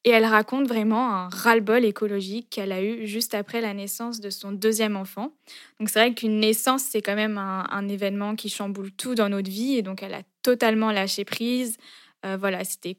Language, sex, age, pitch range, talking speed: French, female, 10-29, 200-240 Hz, 210 wpm